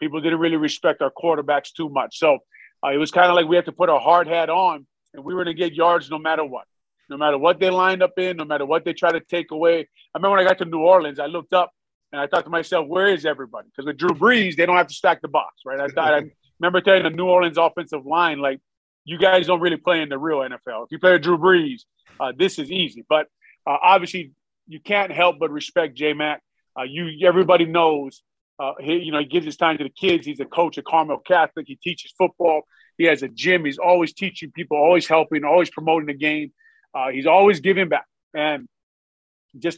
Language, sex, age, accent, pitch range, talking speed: English, male, 30-49, American, 150-180 Hz, 245 wpm